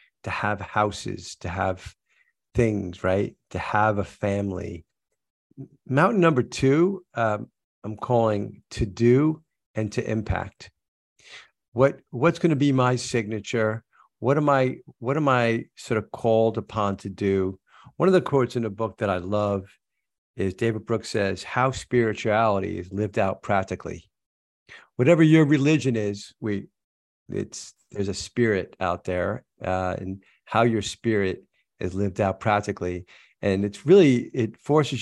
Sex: male